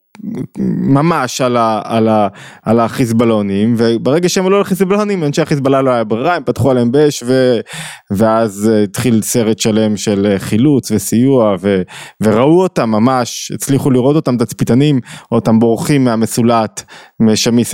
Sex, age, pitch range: male, 20-39, 110-155 Hz